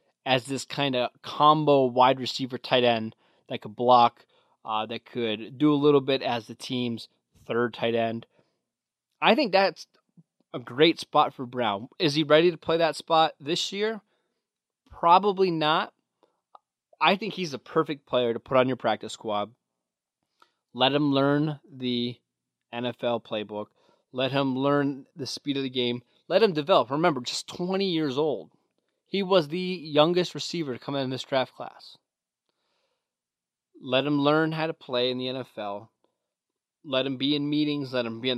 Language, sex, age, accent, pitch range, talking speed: English, male, 20-39, American, 120-150 Hz, 165 wpm